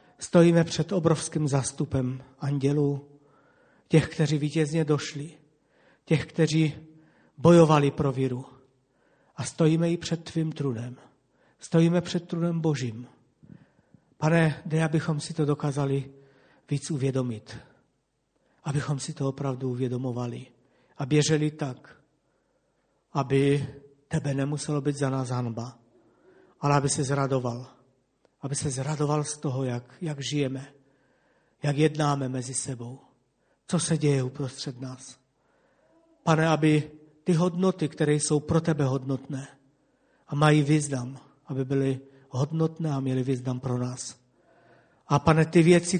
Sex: male